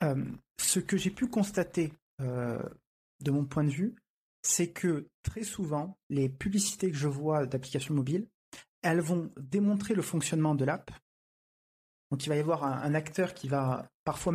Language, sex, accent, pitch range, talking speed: French, male, French, 145-185 Hz, 170 wpm